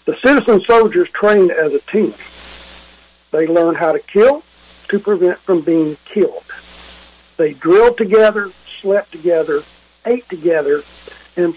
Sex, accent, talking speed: male, American, 130 wpm